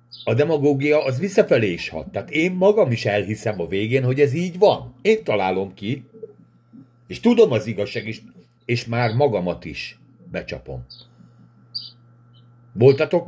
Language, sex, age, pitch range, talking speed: Hungarian, male, 60-79, 90-125 Hz, 140 wpm